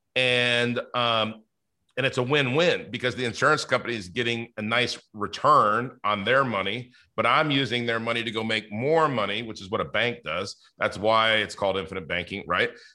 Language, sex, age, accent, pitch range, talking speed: English, male, 40-59, American, 115-130 Hz, 190 wpm